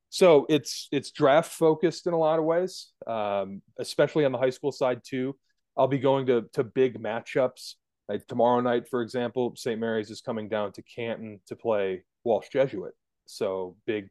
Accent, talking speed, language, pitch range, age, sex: American, 185 wpm, English, 110-135 Hz, 30-49, male